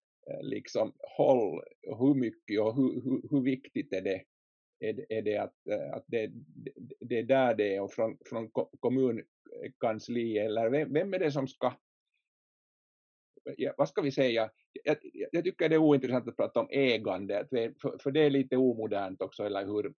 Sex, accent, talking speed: male, Finnish, 175 wpm